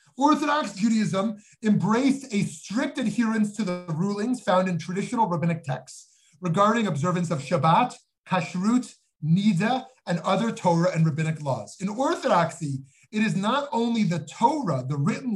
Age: 30-49